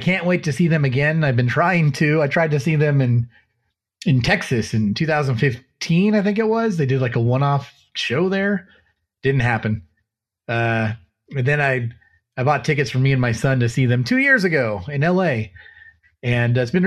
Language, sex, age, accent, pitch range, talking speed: English, male, 30-49, American, 115-155 Hz, 205 wpm